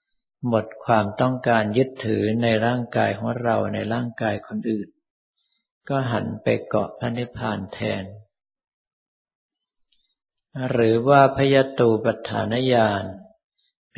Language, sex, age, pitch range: Thai, male, 50-69, 110-125 Hz